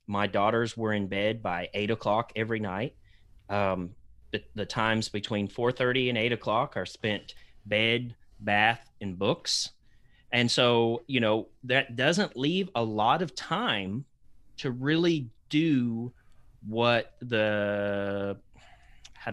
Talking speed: 135 wpm